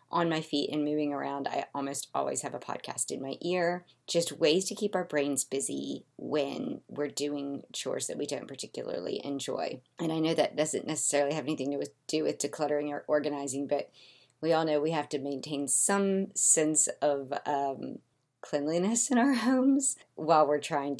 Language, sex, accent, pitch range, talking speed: English, female, American, 145-180 Hz, 185 wpm